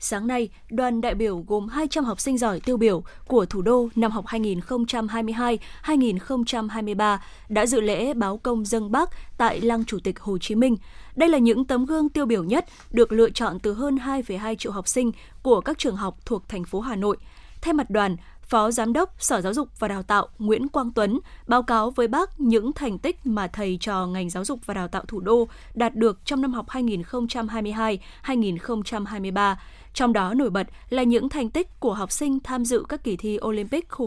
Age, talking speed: 10-29, 205 wpm